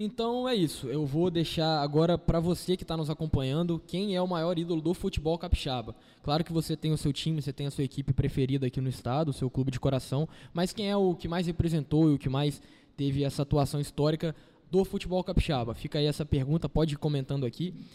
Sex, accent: male, Brazilian